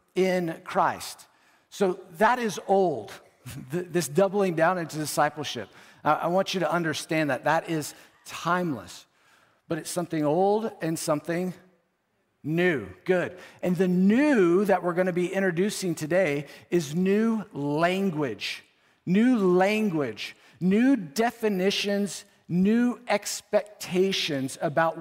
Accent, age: American, 50-69